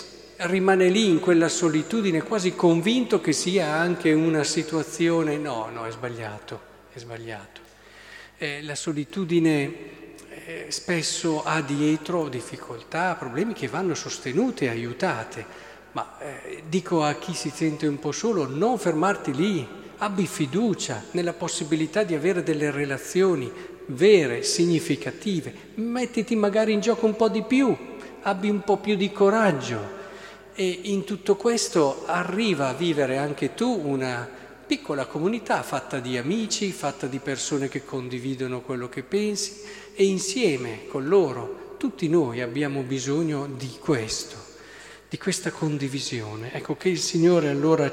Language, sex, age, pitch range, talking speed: Italian, male, 50-69, 140-190 Hz, 135 wpm